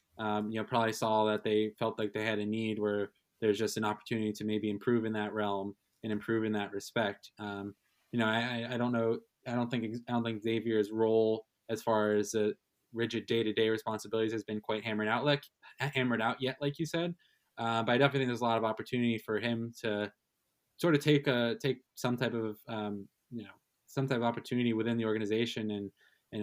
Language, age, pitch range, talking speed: English, 20-39, 105-120 Hz, 220 wpm